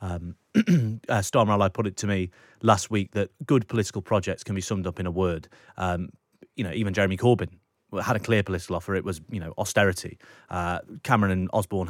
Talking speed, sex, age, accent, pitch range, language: 205 wpm, male, 30-49, British, 90-115 Hz, English